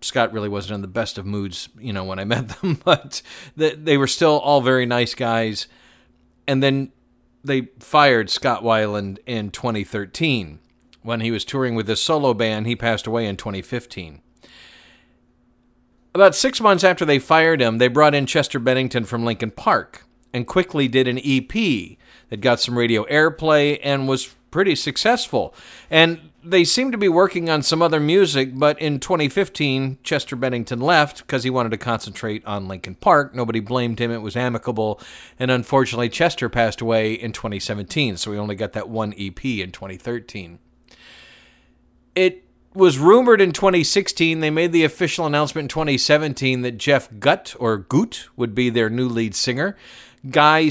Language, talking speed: English, 170 wpm